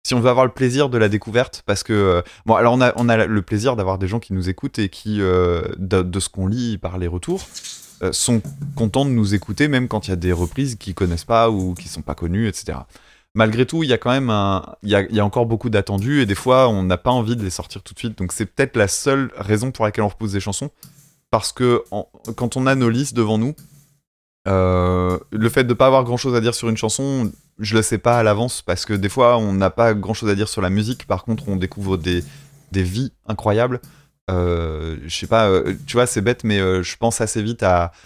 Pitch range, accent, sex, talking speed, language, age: 95-120 Hz, French, male, 260 wpm, French, 20-39